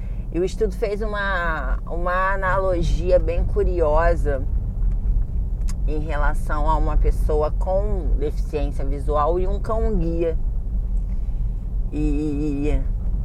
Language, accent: Portuguese, Brazilian